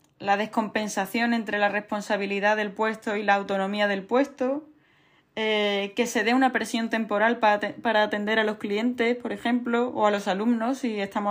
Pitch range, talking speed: 200-230 Hz, 170 wpm